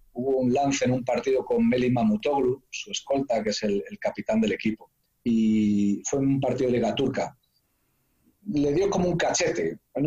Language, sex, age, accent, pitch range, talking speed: Spanish, male, 40-59, Spanish, 120-175 Hz, 190 wpm